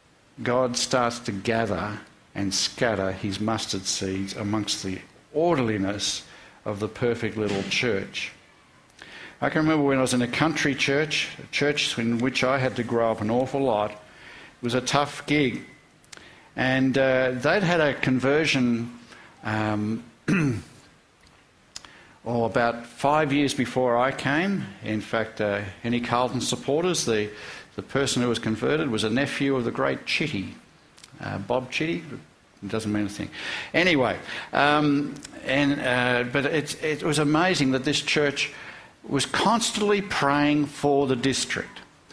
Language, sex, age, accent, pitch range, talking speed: English, male, 60-79, Australian, 115-145 Hz, 145 wpm